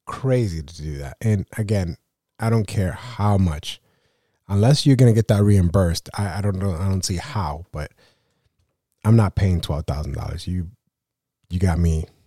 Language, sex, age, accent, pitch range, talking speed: English, male, 30-49, American, 90-115 Hz, 170 wpm